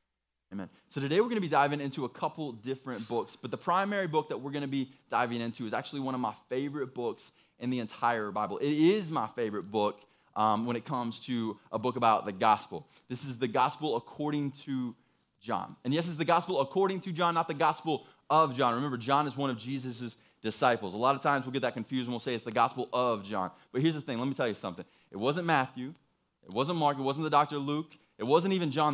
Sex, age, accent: male, 20-39, American